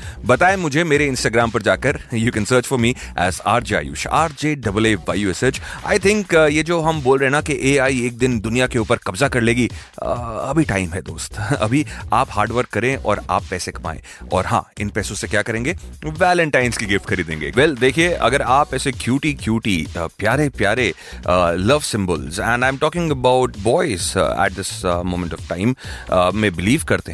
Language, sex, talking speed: Hindi, male, 190 wpm